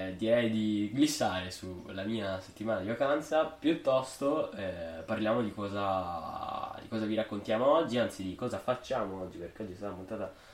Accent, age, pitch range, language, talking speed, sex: native, 10-29, 95-115 Hz, Italian, 160 wpm, male